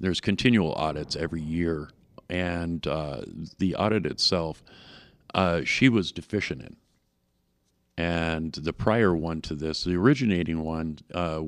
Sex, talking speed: male, 130 wpm